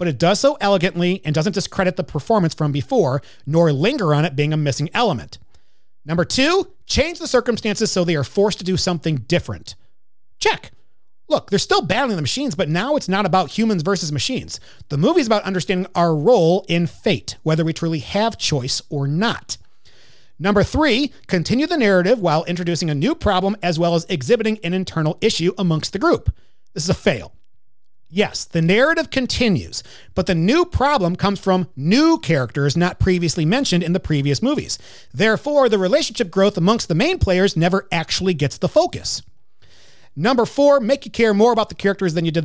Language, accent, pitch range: English, American, 155-215 Hz